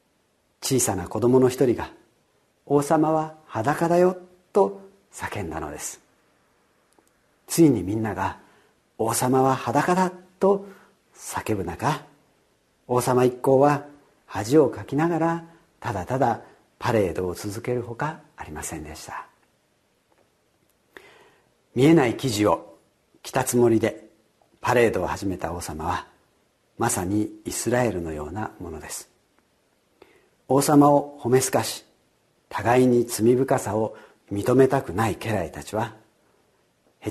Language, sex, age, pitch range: Japanese, male, 50-69, 105-145 Hz